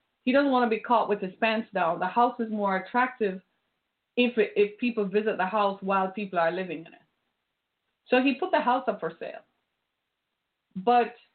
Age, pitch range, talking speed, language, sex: 30-49, 195-245 Hz, 190 wpm, English, female